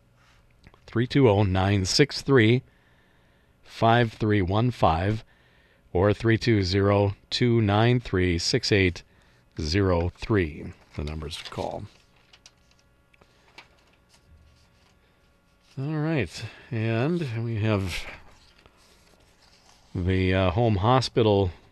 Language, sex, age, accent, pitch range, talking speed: English, male, 50-69, American, 85-115 Hz, 70 wpm